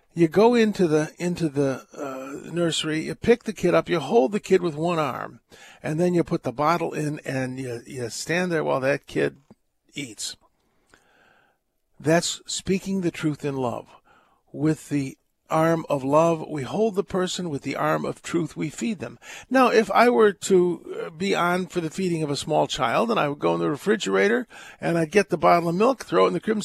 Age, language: 50-69, English